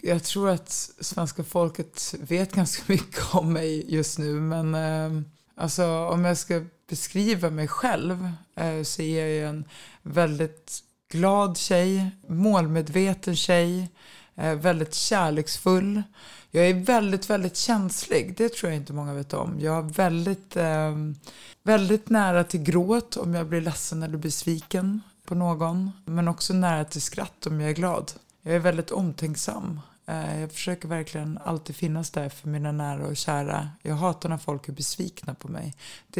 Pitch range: 155-185 Hz